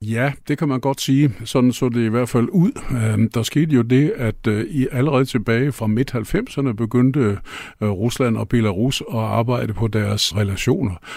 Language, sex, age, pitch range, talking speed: Danish, male, 50-69, 110-130 Hz, 185 wpm